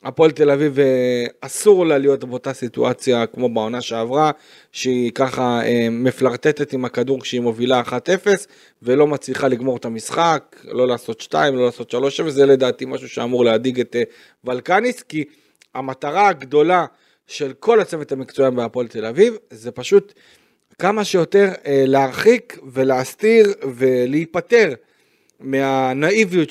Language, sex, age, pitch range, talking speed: Hebrew, male, 40-59, 125-185 Hz, 125 wpm